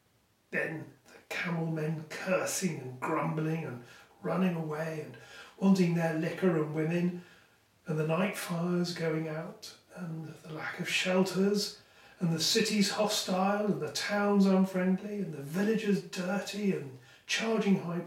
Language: English